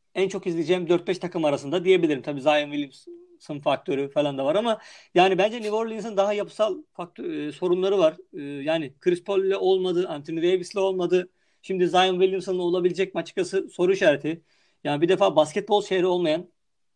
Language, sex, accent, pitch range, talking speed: Turkish, male, native, 160-200 Hz, 155 wpm